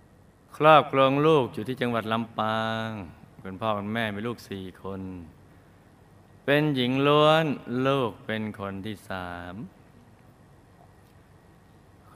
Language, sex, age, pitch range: Thai, male, 20-39, 100-125 Hz